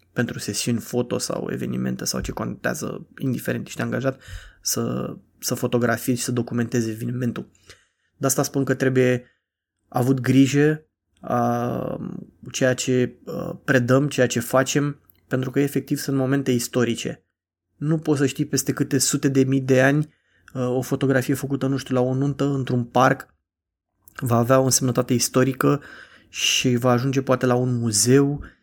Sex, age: male, 20-39